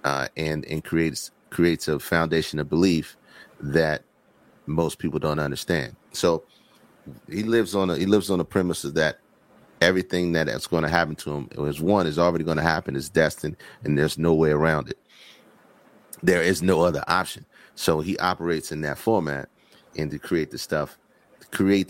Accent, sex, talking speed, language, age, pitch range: American, male, 185 wpm, English, 30-49, 75-85 Hz